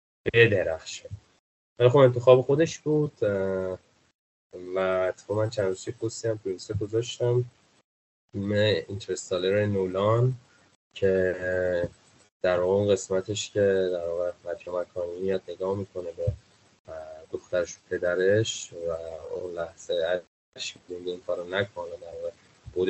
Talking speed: 105 wpm